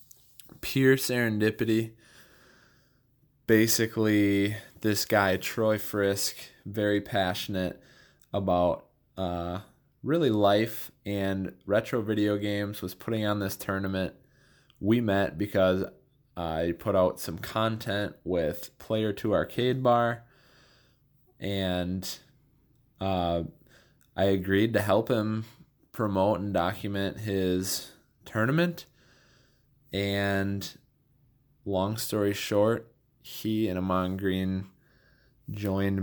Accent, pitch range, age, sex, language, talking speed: American, 95-120 Hz, 20-39, male, English, 95 wpm